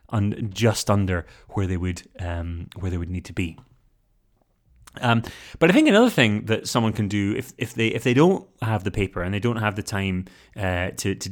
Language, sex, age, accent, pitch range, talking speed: English, male, 30-49, British, 95-120 Hz, 215 wpm